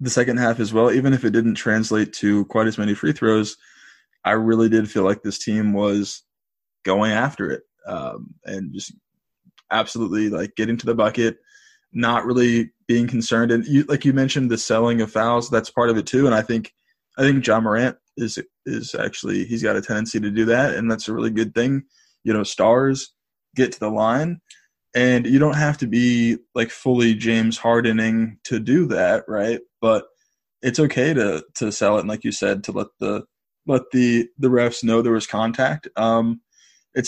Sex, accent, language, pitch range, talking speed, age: male, American, English, 110-130 Hz, 195 wpm, 20-39